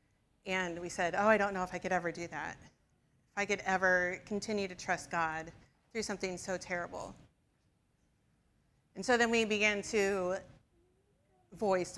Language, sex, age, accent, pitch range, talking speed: English, female, 30-49, American, 180-230 Hz, 160 wpm